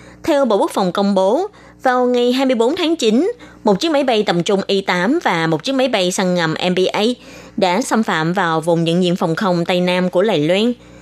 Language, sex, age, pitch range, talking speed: Vietnamese, female, 20-39, 180-250 Hz, 220 wpm